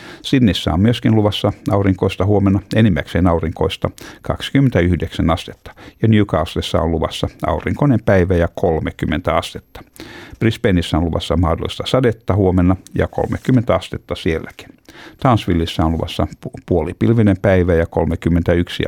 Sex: male